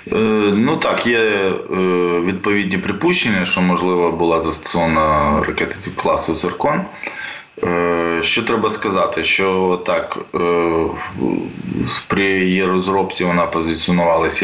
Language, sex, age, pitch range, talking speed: Ukrainian, male, 20-39, 80-90 Hz, 90 wpm